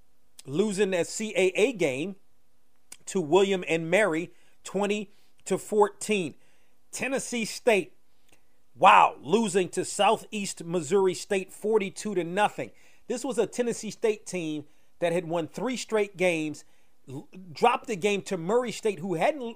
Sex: male